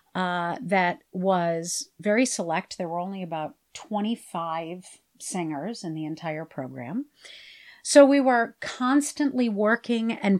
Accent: American